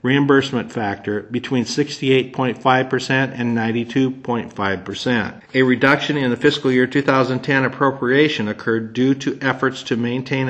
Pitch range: 115-135 Hz